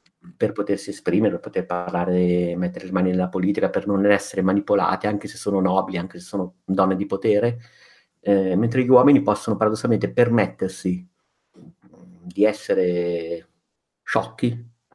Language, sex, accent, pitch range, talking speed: Italian, male, native, 95-110 Hz, 140 wpm